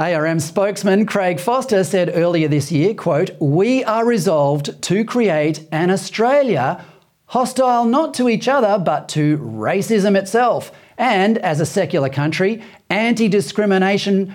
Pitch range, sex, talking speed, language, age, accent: 150-205 Hz, male, 130 wpm, English, 40-59, Australian